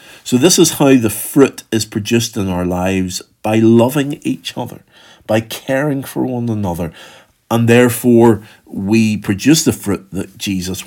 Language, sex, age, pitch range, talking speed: English, male, 50-69, 110-145 Hz, 155 wpm